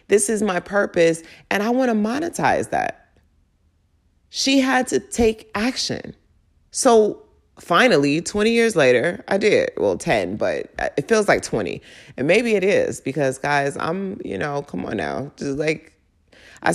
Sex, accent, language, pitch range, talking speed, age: female, American, English, 145-215 Hz, 160 wpm, 30-49